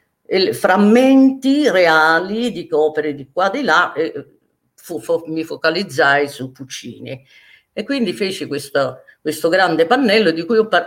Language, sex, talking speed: Italian, female, 150 wpm